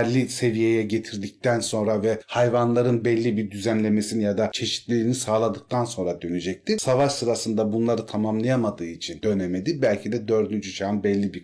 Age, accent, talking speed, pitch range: 40-59, native, 140 wpm, 110-155 Hz